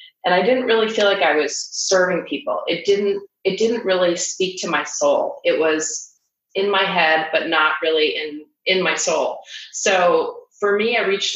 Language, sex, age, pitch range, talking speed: English, female, 30-49, 155-205 Hz, 190 wpm